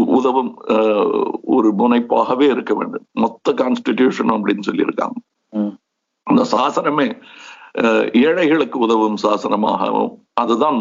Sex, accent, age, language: male, native, 60-79, Hindi